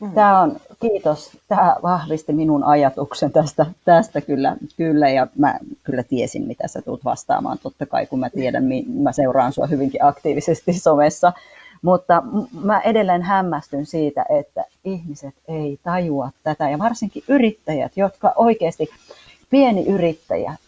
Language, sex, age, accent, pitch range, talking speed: Finnish, female, 40-59, native, 155-220 Hz, 135 wpm